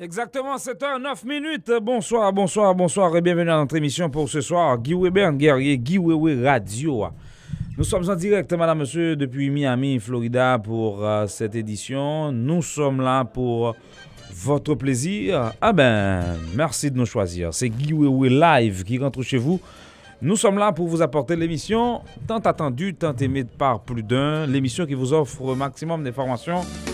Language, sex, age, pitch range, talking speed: English, male, 30-49, 130-175 Hz, 170 wpm